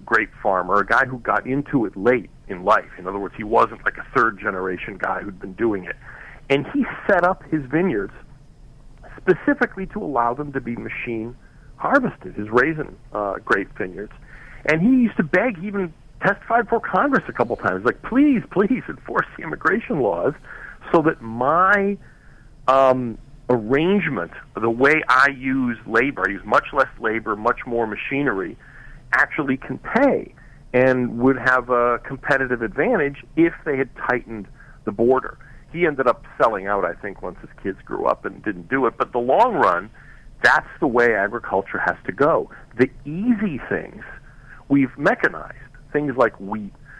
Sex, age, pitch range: male, 40-59, 120-180 Hz